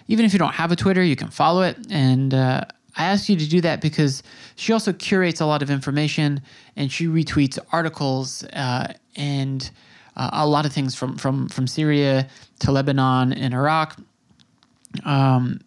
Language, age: English, 20-39